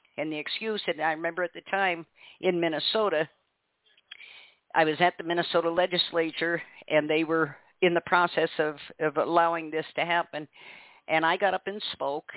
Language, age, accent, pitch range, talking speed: English, 50-69, American, 160-195 Hz, 170 wpm